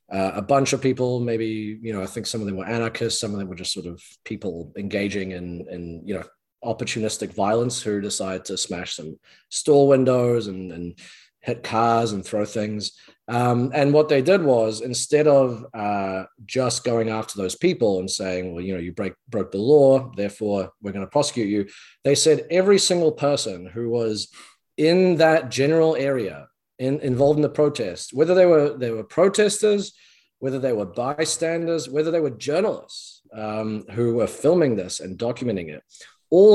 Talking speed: 185 wpm